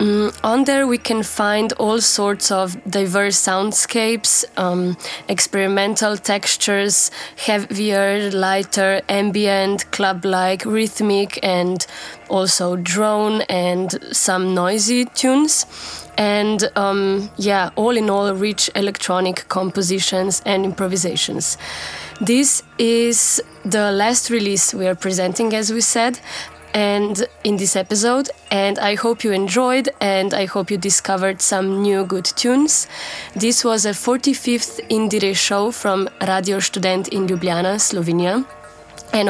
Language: Hungarian